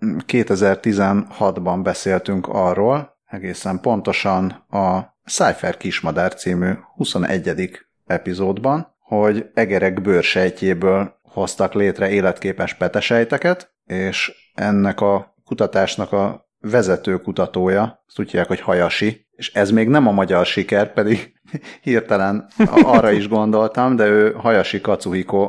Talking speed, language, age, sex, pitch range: 105 wpm, Hungarian, 30-49, male, 95-110 Hz